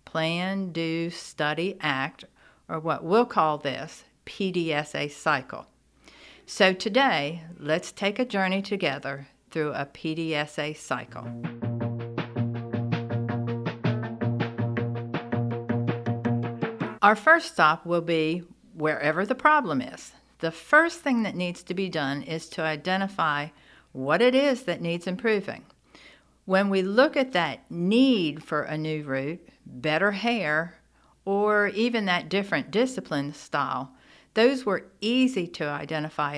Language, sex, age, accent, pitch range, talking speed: English, female, 50-69, American, 150-200 Hz, 115 wpm